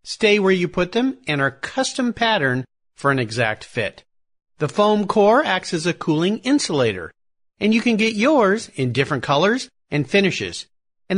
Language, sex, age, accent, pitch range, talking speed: English, male, 50-69, American, 125-205 Hz, 170 wpm